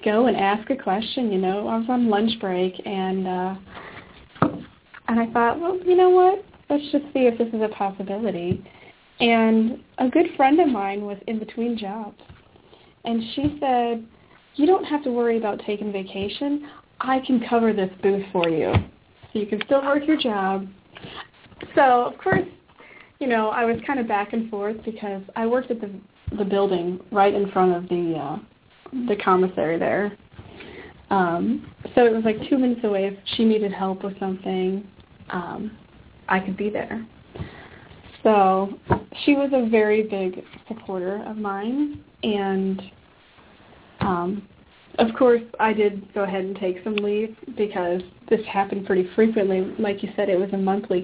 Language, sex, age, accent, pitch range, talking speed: English, female, 30-49, American, 195-240 Hz, 170 wpm